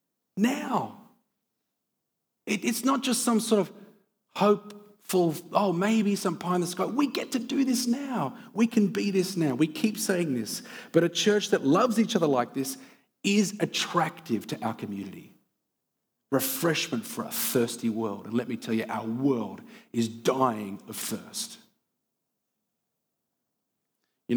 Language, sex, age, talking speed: English, male, 40-59, 150 wpm